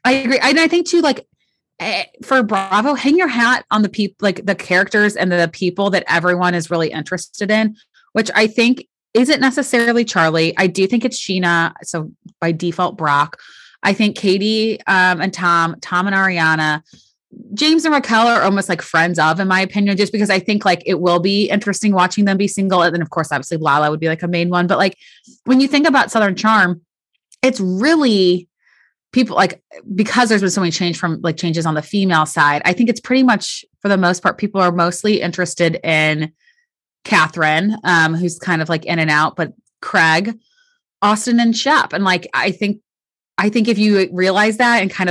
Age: 20-39